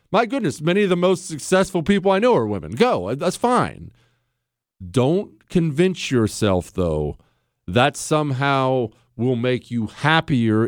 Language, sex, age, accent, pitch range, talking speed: English, male, 40-59, American, 115-180 Hz, 140 wpm